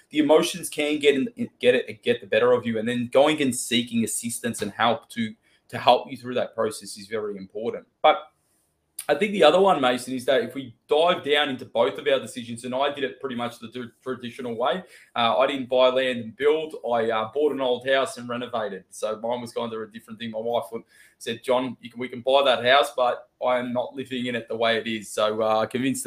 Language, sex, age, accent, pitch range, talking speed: English, male, 20-39, Australian, 115-150 Hz, 250 wpm